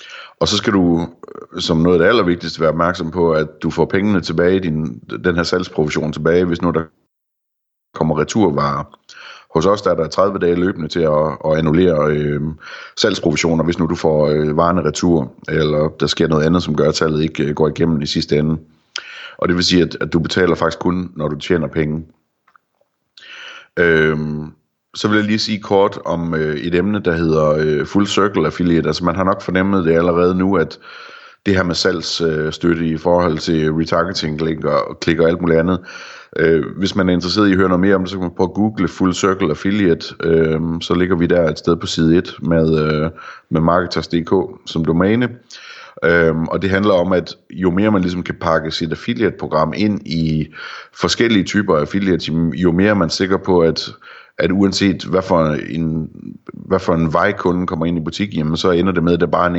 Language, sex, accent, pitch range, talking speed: Danish, male, native, 75-90 Hz, 205 wpm